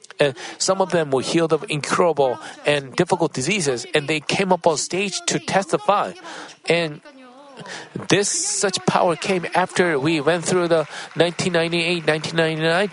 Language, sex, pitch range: Korean, male, 150-200 Hz